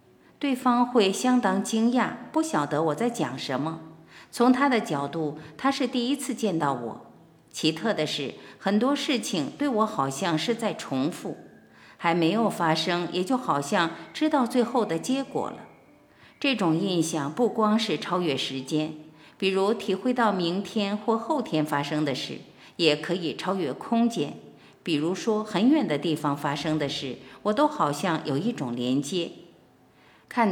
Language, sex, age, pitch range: Chinese, female, 50-69, 155-225 Hz